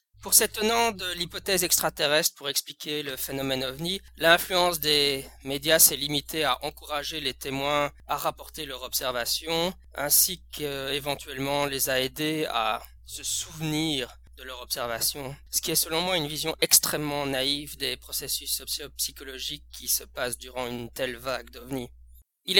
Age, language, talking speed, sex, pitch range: 20-39, French, 145 wpm, male, 125-160 Hz